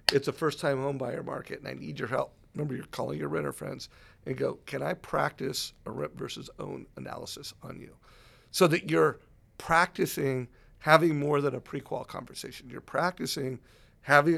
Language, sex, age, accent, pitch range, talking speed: English, male, 50-69, American, 125-160 Hz, 165 wpm